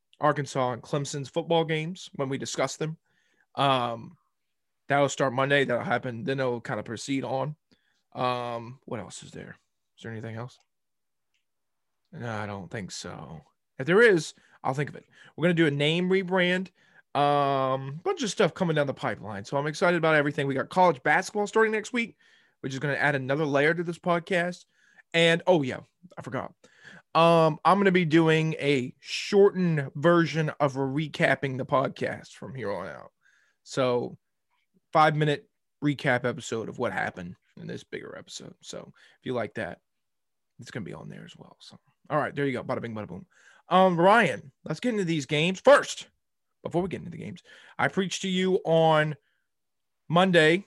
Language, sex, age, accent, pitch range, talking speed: English, male, 20-39, American, 135-175 Hz, 185 wpm